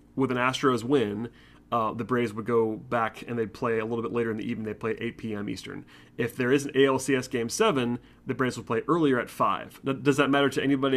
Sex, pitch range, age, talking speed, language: male, 115-135 Hz, 30-49, 245 wpm, English